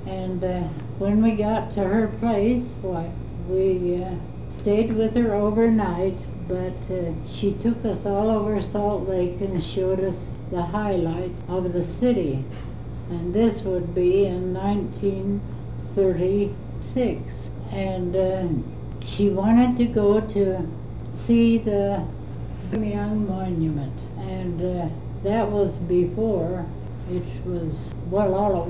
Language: English